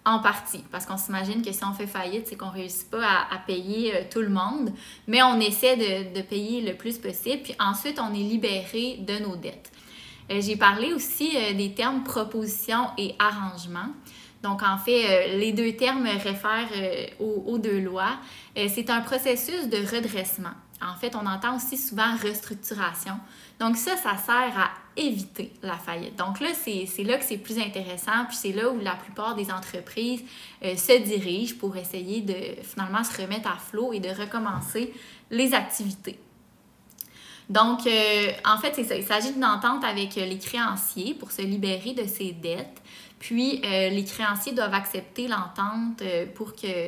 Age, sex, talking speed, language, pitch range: 20-39, female, 195 wpm, French, 195-235 Hz